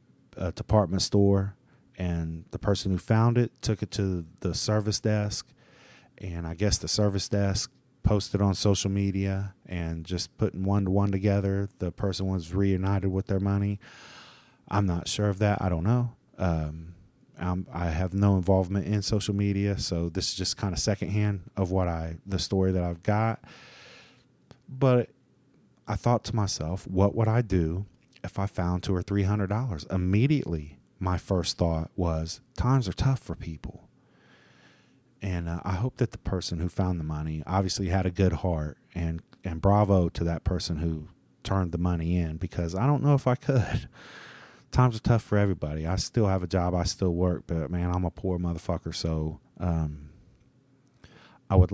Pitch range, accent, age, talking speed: 85-105 Hz, American, 30-49, 175 wpm